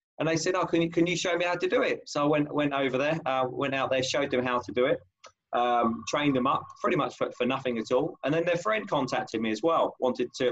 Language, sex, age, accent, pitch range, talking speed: English, male, 20-39, British, 125-160 Hz, 290 wpm